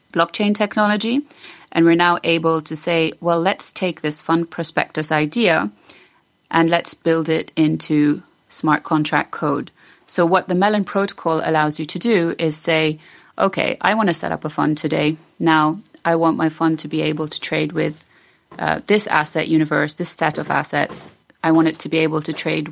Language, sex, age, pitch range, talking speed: English, female, 30-49, 155-170 Hz, 185 wpm